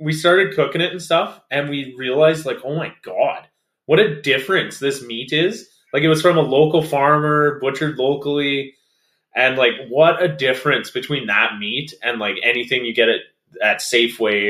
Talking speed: 180 wpm